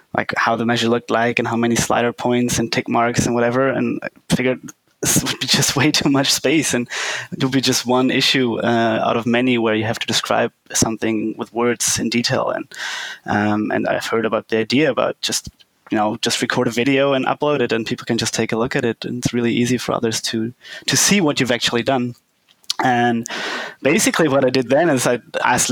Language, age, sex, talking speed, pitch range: English, 20-39, male, 225 wpm, 115-130 Hz